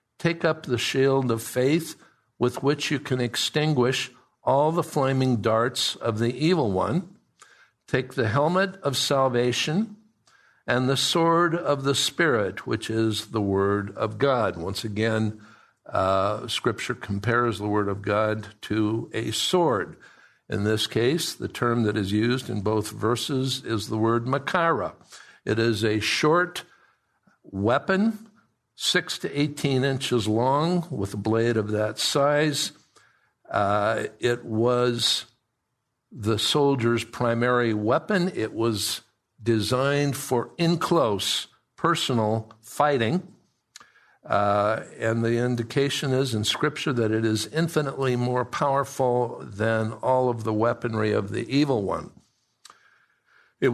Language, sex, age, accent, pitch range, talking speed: English, male, 60-79, American, 110-140 Hz, 130 wpm